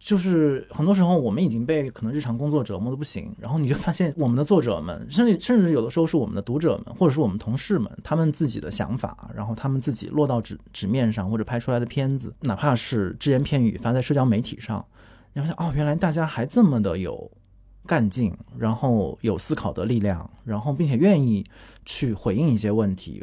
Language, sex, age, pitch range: Chinese, male, 20-39, 110-165 Hz